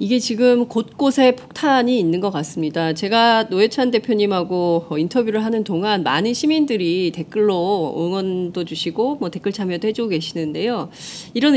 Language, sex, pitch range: Korean, female, 170-240 Hz